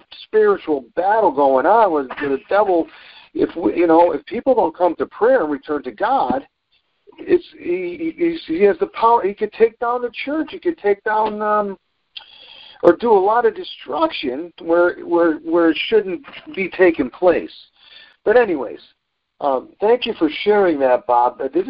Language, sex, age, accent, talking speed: English, male, 50-69, American, 175 wpm